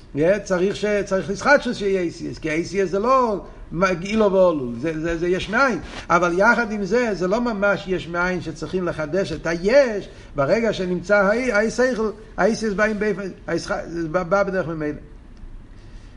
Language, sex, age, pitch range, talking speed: Hebrew, male, 60-79, 120-185 Hz, 150 wpm